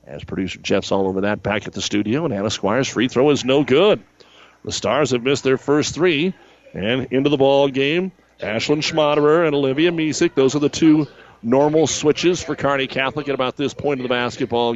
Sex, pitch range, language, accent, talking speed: male, 115-140 Hz, English, American, 205 wpm